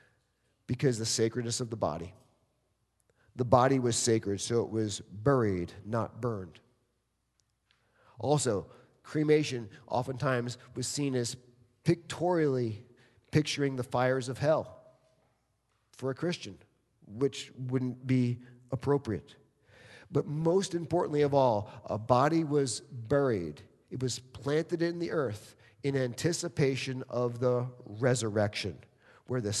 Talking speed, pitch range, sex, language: 115 wpm, 120-145 Hz, male, English